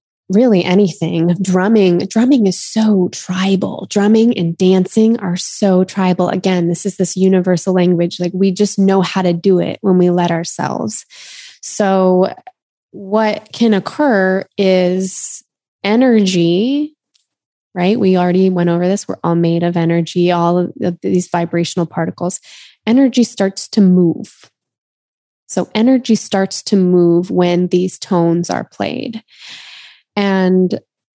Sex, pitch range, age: female, 180-210 Hz, 20-39